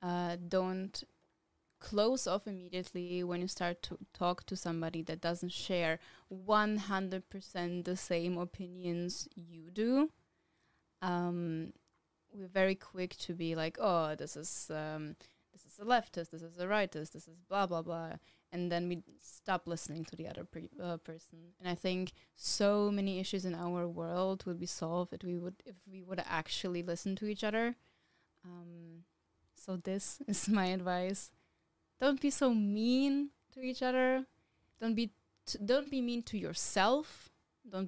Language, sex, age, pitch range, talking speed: Slovak, female, 20-39, 175-230 Hz, 160 wpm